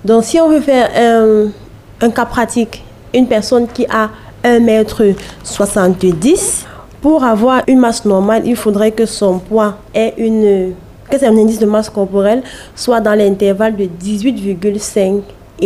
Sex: female